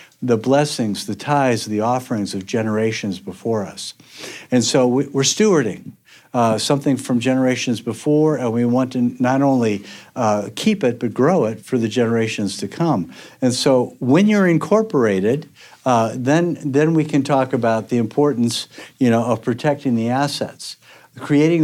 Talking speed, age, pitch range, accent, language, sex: 160 wpm, 60-79, 110-140 Hz, American, English, male